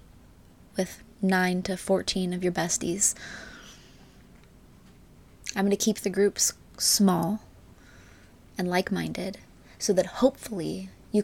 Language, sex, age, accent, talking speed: English, female, 20-39, American, 105 wpm